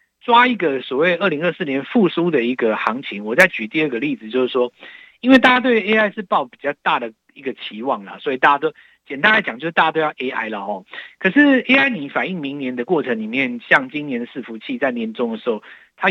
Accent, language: native, Chinese